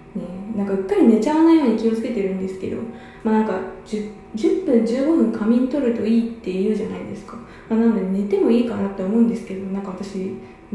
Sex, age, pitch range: female, 20-39, 195-245 Hz